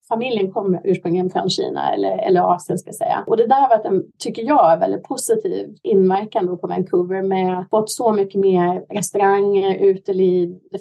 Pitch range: 180-215 Hz